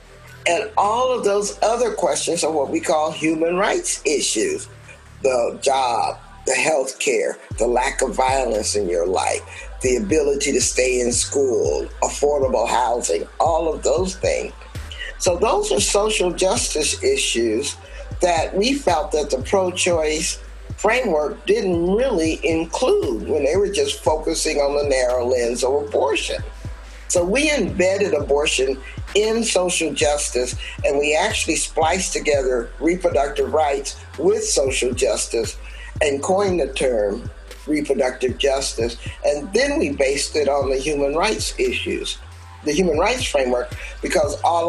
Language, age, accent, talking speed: English, 50-69, American, 135 wpm